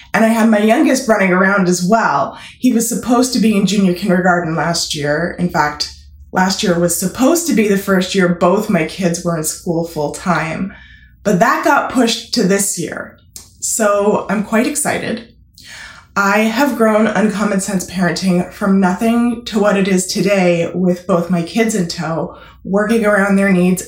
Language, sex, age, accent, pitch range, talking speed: English, female, 20-39, American, 180-230 Hz, 180 wpm